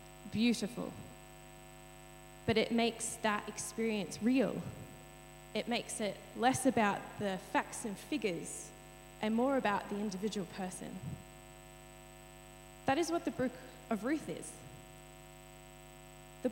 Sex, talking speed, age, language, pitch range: female, 115 wpm, 10-29, English, 190-255 Hz